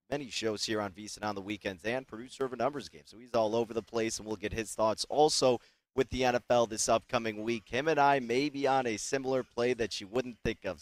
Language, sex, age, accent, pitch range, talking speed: English, male, 30-49, American, 110-140 Hz, 260 wpm